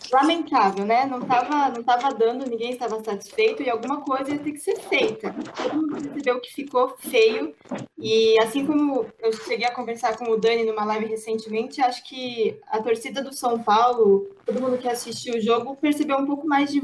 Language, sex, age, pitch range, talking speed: Portuguese, female, 10-29, 220-275 Hz, 190 wpm